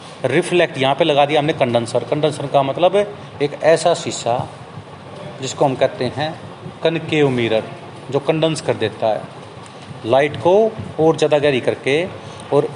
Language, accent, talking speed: Hindi, native, 150 wpm